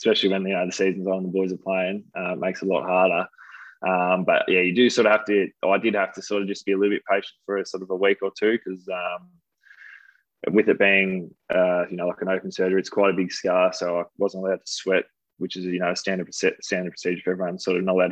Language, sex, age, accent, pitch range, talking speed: English, male, 20-39, Australian, 90-100 Hz, 285 wpm